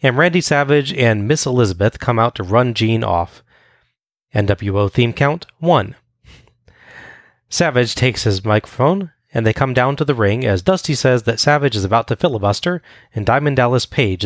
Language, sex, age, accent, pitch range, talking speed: English, male, 30-49, American, 105-135 Hz, 170 wpm